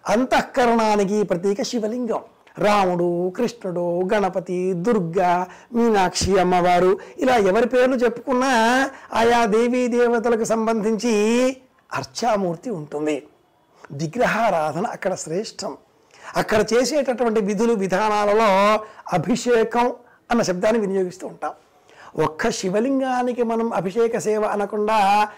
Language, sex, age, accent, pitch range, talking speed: Telugu, male, 60-79, native, 200-235 Hz, 85 wpm